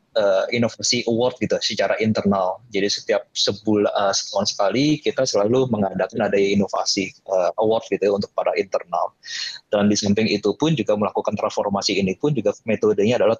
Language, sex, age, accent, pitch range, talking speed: Indonesian, male, 20-39, native, 100-135 Hz, 155 wpm